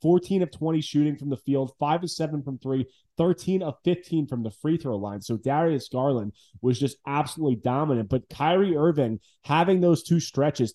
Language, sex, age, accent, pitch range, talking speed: English, male, 20-39, American, 125-165 Hz, 155 wpm